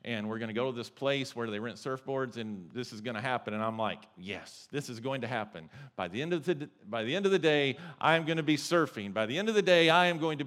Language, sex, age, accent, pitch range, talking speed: English, male, 40-59, American, 125-165 Hz, 290 wpm